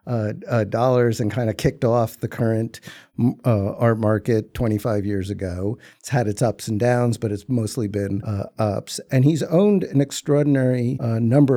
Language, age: English, 50-69